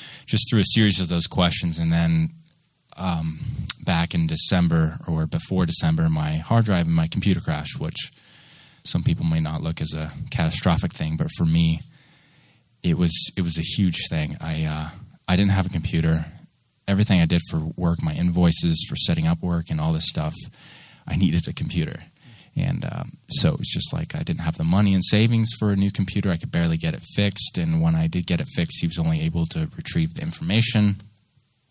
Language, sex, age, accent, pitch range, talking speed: English, male, 20-39, American, 85-125 Hz, 205 wpm